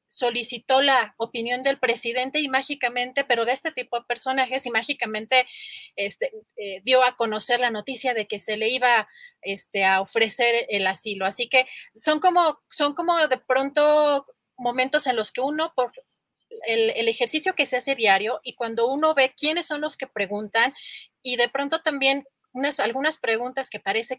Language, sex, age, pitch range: Spanish, female, 30-49, 215-265 Hz